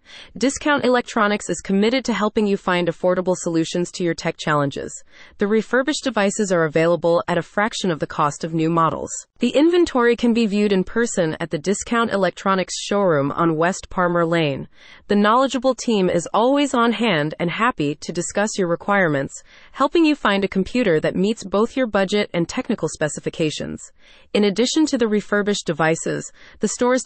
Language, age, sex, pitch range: English, 30-49, female, 170-230 Hz